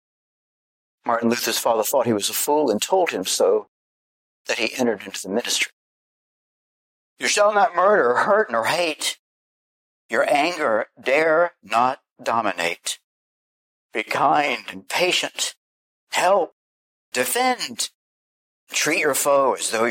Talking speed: 125 wpm